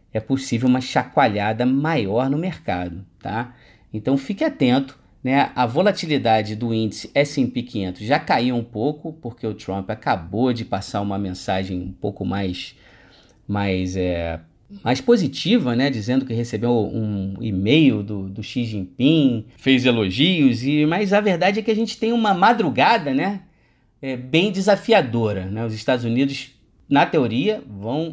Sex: male